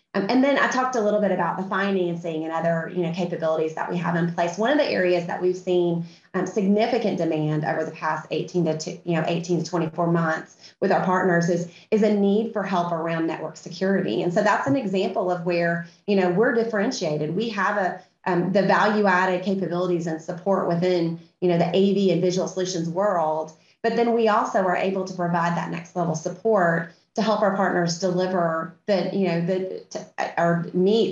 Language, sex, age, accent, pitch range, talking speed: English, female, 30-49, American, 170-200 Hz, 210 wpm